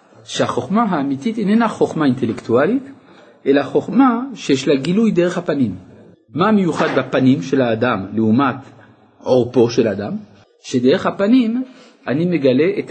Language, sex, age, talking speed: Hebrew, male, 50-69, 120 wpm